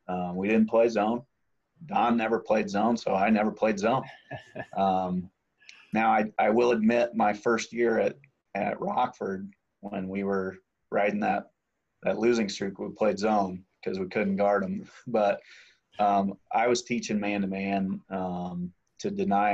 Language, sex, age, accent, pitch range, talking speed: English, male, 30-49, American, 95-115 Hz, 160 wpm